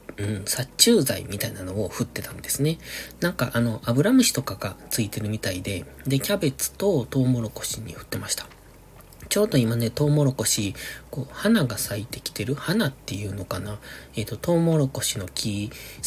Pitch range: 105-145 Hz